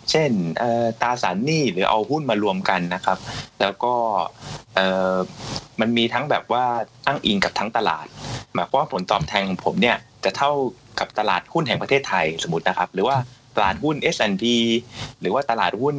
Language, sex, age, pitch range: Thai, male, 20-39, 100-130 Hz